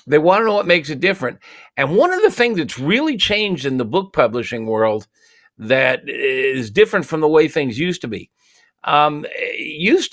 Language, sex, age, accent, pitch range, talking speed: English, male, 50-69, American, 135-200 Hz, 195 wpm